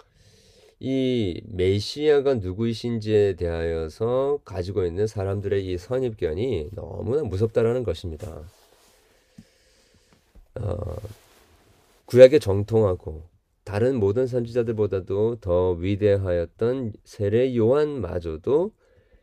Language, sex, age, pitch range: Korean, male, 30-49, 90-115 Hz